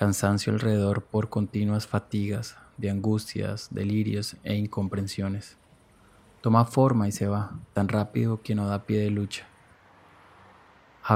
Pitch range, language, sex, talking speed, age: 100-115 Hz, Spanish, male, 130 wpm, 20-39